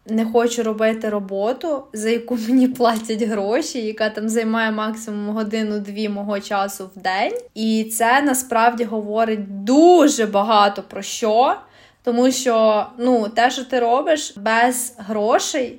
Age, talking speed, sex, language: 20-39, 135 wpm, female, Ukrainian